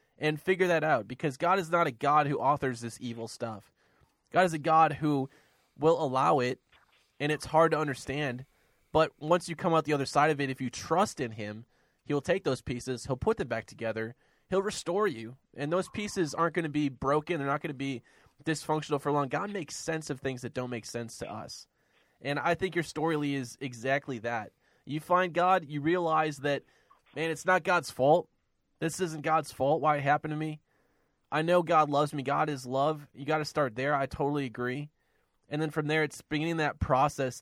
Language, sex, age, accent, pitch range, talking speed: English, male, 20-39, American, 130-160 Hz, 215 wpm